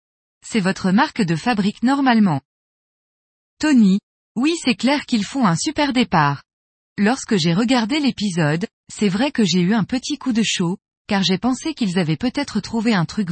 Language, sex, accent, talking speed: French, female, French, 170 wpm